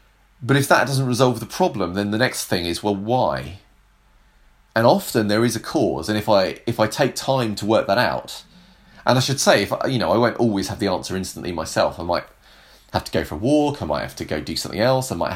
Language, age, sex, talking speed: English, 30-49, male, 255 wpm